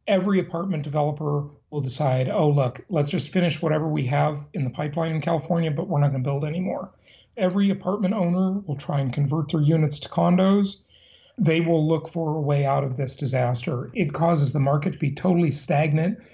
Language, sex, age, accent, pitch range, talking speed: English, male, 40-59, American, 140-180 Hz, 200 wpm